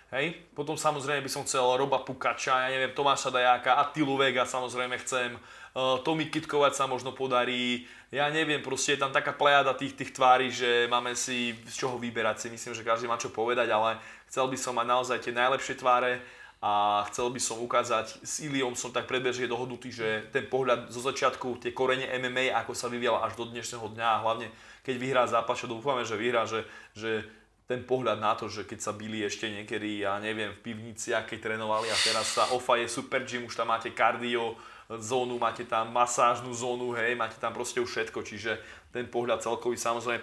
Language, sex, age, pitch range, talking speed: Slovak, male, 20-39, 115-130 Hz, 195 wpm